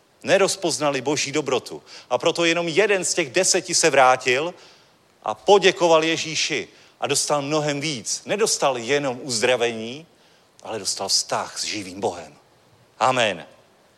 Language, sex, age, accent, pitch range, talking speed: Czech, male, 40-59, native, 135-180 Hz, 125 wpm